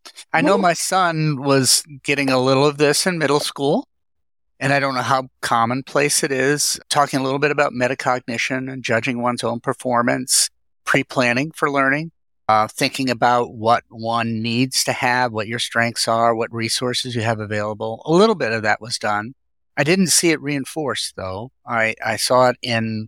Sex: male